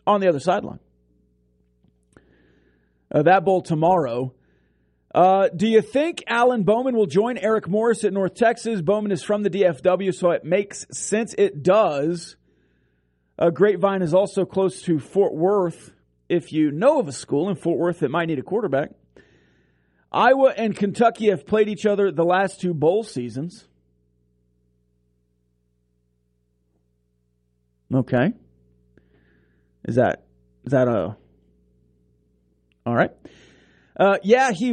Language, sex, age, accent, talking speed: English, male, 40-59, American, 135 wpm